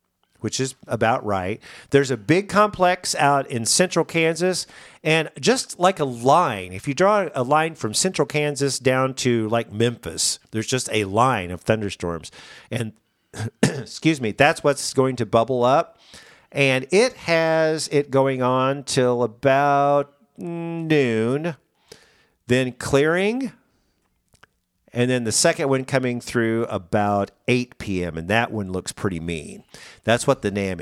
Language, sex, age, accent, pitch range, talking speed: English, male, 50-69, American, 105-150 Hz, 145 wpm